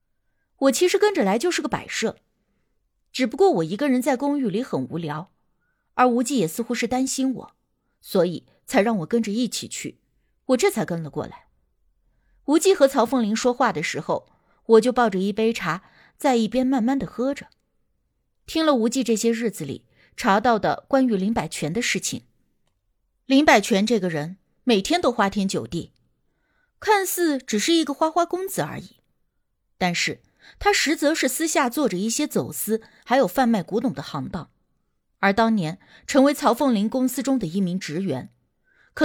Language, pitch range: Chinese, 205-275 Hz